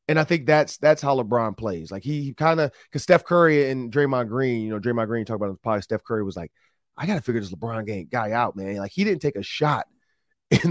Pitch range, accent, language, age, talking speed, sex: 120-160 Hz, American, English, 30-49, 265 wpm, male